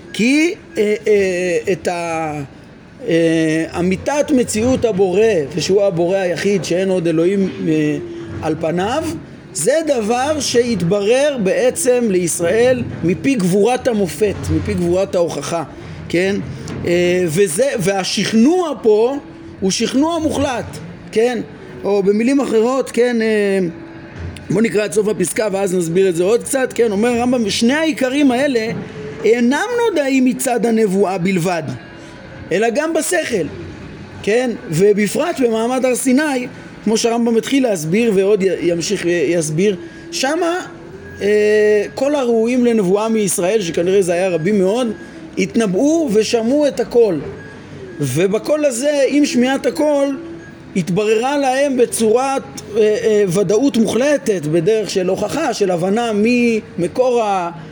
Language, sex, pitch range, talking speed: Hebrew, male, 185-250 Hz, 120 wpm